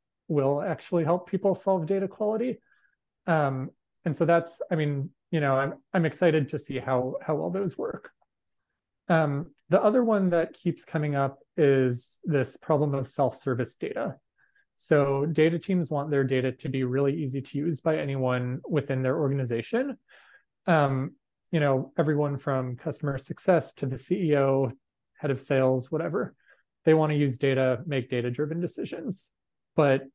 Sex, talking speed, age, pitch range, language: male, 155 wpm, 30-49, 130-170 Hz, English